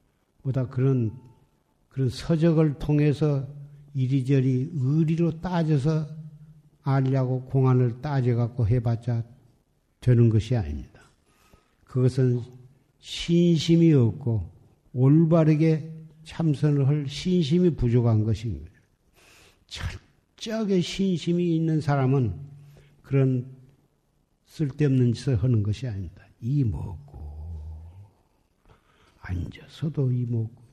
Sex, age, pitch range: male, 60-79, 115-150 Hz